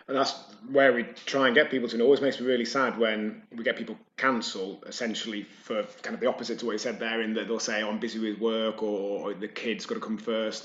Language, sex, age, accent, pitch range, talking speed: English, male, 30-49, British, 105-125 Hz, 275 wpm